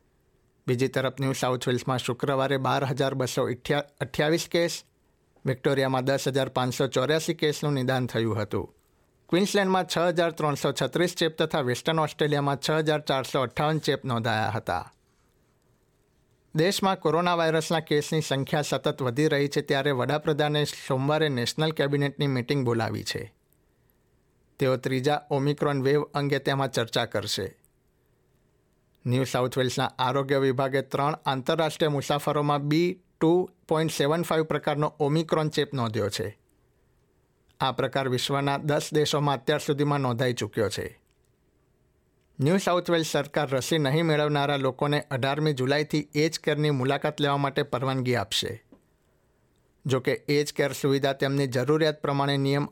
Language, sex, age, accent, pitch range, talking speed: Gujarati, male, 60-79, native, 130-155 Hz, 115 wpm